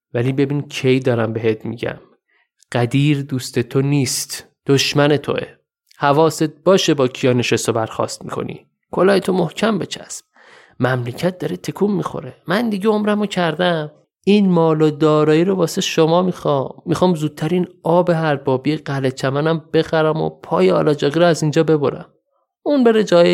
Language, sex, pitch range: Persian, male, 125-160 Hz